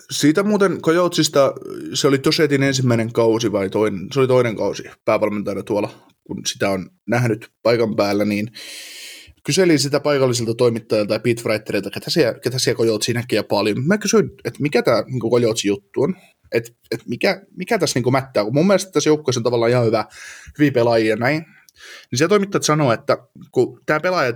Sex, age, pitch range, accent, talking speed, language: male, 20-39, 115-145 Hz, native, 170 wpm, Finnish